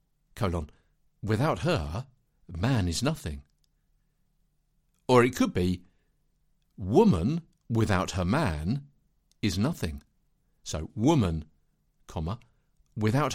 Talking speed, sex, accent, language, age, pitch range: 90 wpm, male, British, English, 60-79, 85-130 Hz